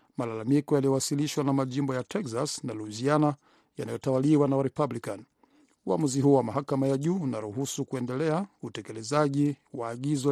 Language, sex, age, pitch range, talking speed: Swahili, male, 50-69, 135-155 Hz, 135 wpm